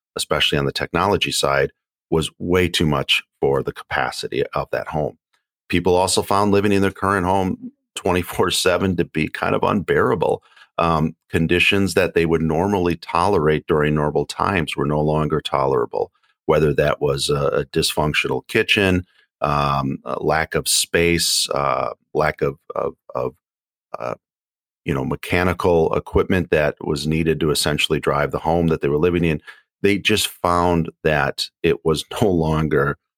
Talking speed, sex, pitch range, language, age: 155 wpm, male, 75-90 Hz, English, 40-59